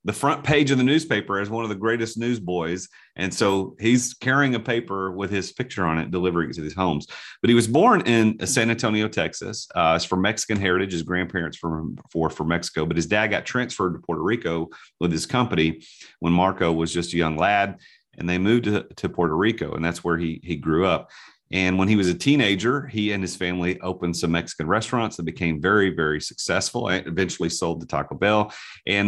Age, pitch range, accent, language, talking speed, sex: 40-59, 85-115 Hz, American, English, 215 wpm, male